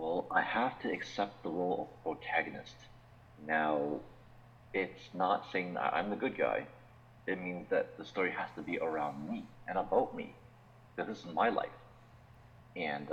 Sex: male